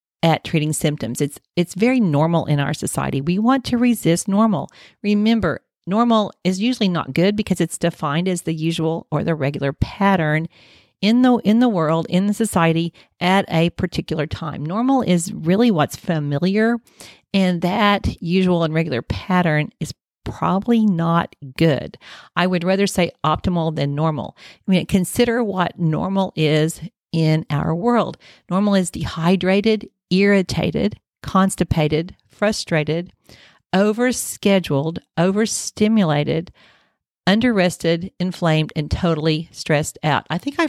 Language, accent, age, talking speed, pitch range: English, American, 50-69, 135 wpm, 160-200 Hz